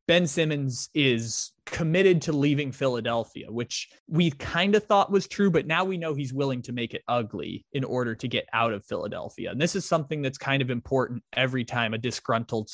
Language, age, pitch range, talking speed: English, 20-39, 120-150 Hz, 205 wpm